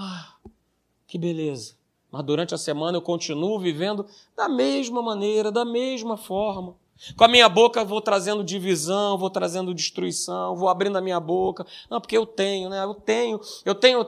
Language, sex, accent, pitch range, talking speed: Portuguese, male, Brazilian, 210-300 Hz, 170 wpm